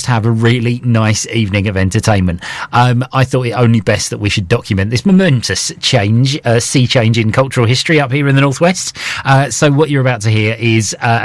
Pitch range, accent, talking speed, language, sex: 110-150 Hz, British, 220 wpm, English, male